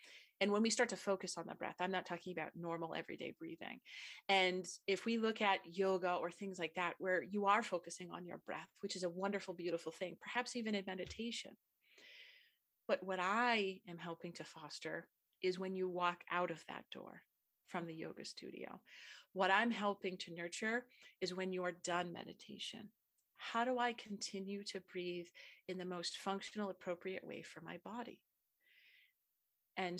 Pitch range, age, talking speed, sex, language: 170-200 Hz, 30-49, 180 wpm, female, English